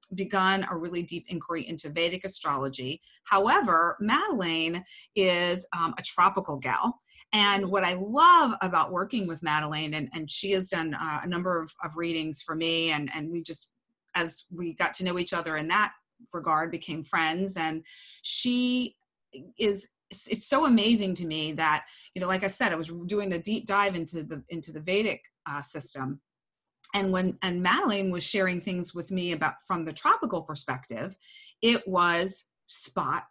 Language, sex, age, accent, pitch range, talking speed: English, female, 30-49, American, 160-200 Hz, 175 wpm